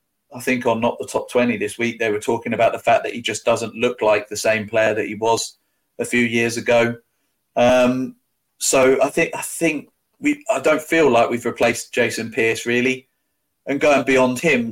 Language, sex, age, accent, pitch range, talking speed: English, male, 30-49, British, 115-135 Hz, 210 wpm